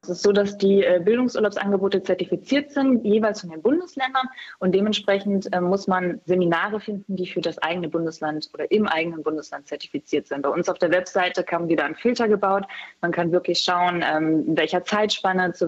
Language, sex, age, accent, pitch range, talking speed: German, female, 20-39, German, 165-200 Hz, 190 wpm